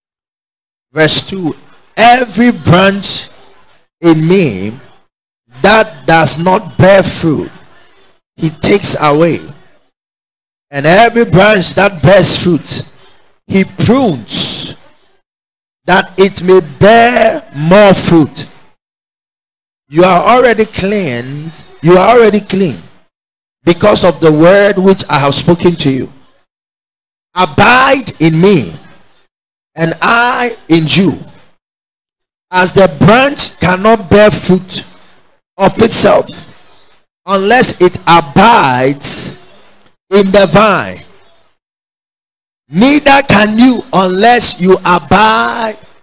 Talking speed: 95 wpm